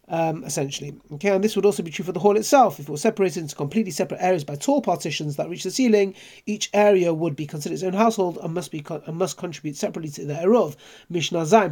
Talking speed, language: 250 wpm, English